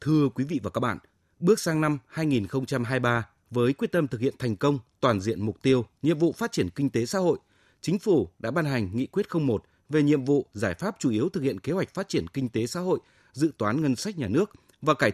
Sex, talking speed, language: male, 245 wpm, Vietnamese